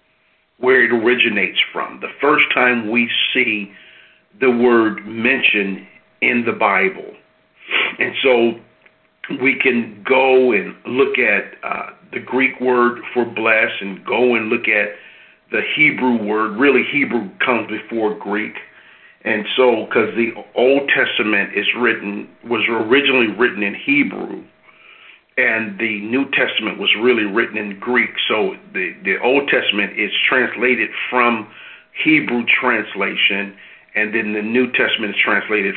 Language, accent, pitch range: English, American, 110-130 Hz